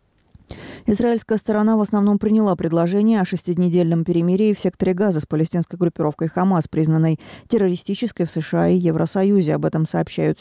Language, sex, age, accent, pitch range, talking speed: Russian, female, 20-39, native, 165-195 Hz, 145 wpm